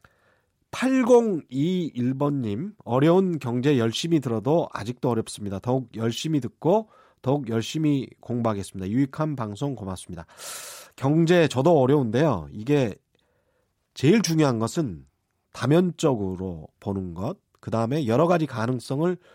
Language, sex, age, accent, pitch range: Korean, male, 40-59, native, 115-175 Hz